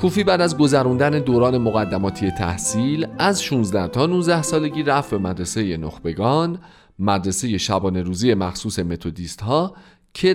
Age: 40-59